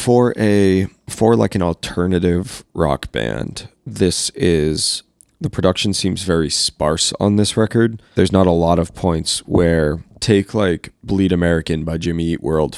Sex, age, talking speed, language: male, 20-39, 155 wpm, English